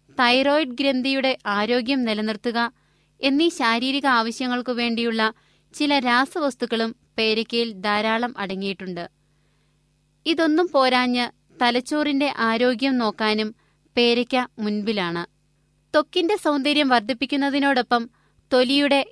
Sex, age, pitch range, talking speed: female, 20-39, 225-275 Hz, 65 wpm